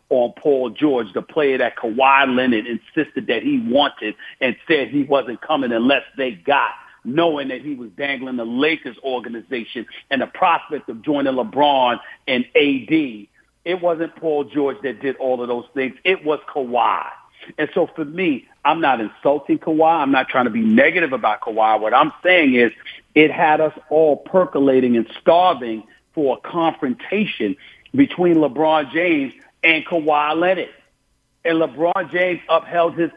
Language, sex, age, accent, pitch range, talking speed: English, male, 50-69, American, 140-195 Hz, 165 wpm